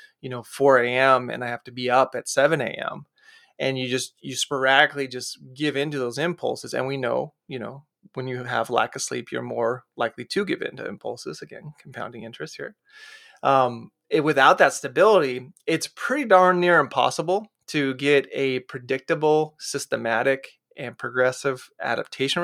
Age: 30-49